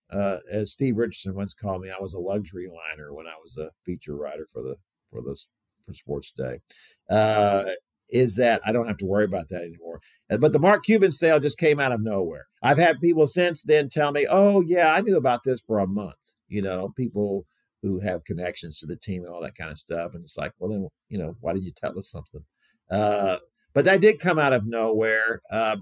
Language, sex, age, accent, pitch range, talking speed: English, male, 50-69, American, 100-160 Hz, 230 wpm